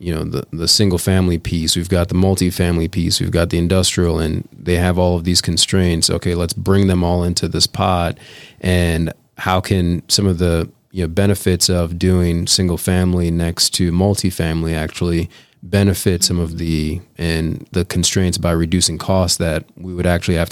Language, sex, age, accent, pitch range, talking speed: English, male, 30-49, American, 85-95 Hz, 180 wpm